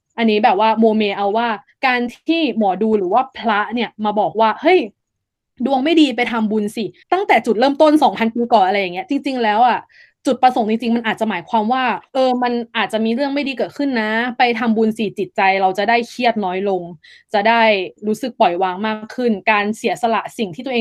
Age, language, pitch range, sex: 20-39, Thai, 205-245 Hz, female